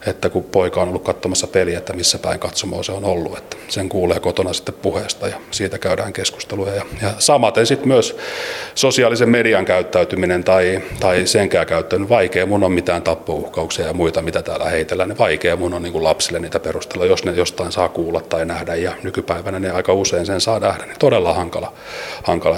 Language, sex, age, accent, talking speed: Finnish, male, 30-49, native, 190 wpm